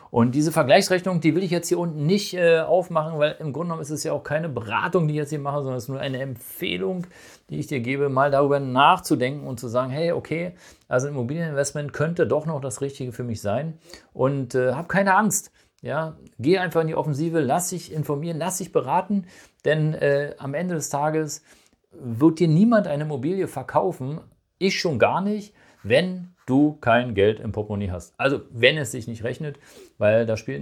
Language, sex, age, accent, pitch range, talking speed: German, male, 50-69, German, 110-160 Hz, 205 wpm